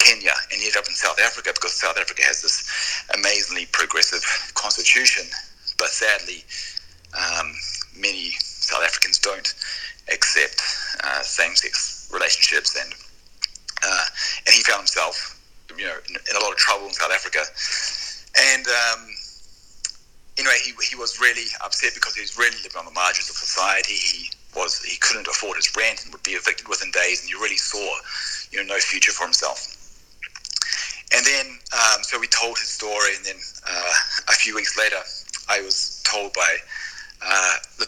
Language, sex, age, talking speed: English, male, 30-49, 165 wpm